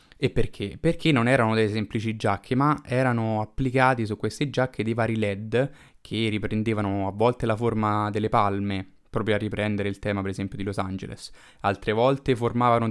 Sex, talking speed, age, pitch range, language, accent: male, 175 wpm, 20-39, 105-130 Hz, Italian, native